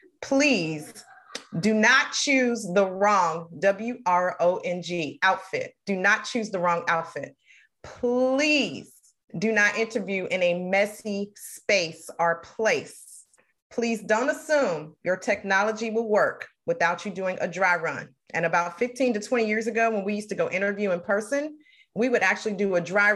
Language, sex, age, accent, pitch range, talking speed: English, female, 30-49, American, 175-240 Hz, 150 wpm